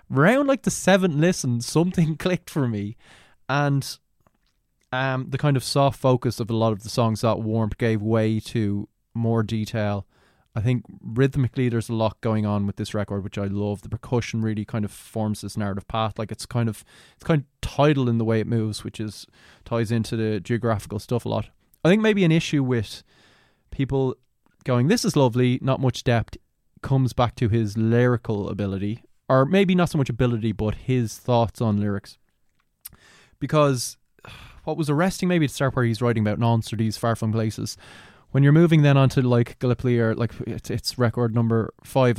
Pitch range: 110-135 Hz